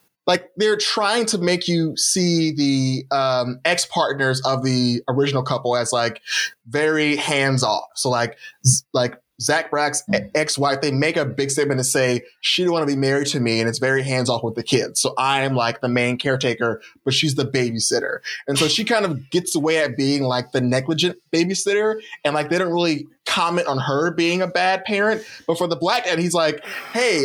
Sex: male